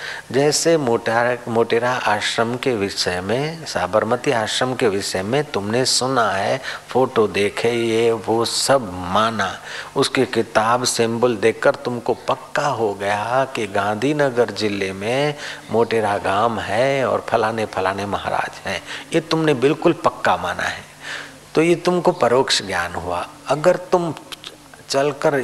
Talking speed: 130 wpm